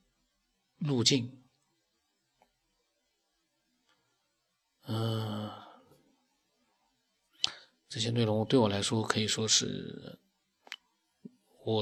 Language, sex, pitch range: Chinese, male, 110-130 Hz